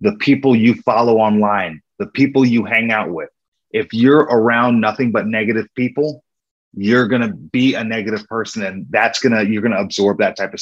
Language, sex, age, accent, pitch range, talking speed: English, male, 30-49, American, 105-130 Hz, 205 wpm